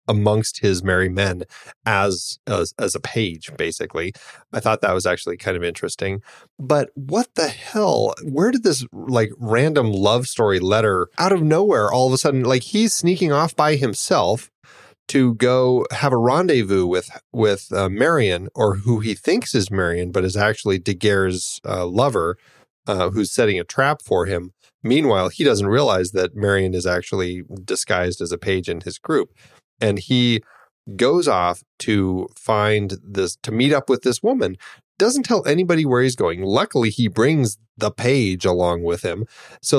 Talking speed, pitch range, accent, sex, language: 170 wpm, 95-145 Hz, American, male, English